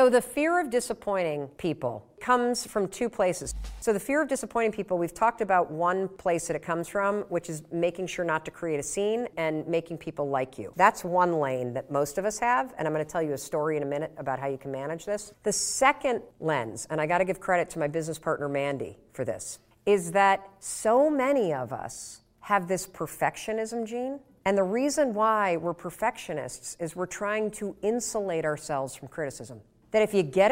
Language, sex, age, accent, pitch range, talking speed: English, female, 50-69, American, 155-215 Hz, 210 wpm